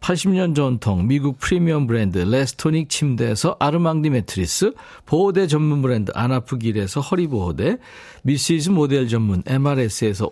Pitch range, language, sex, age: 110-165 Hz, Korean, male, 50-69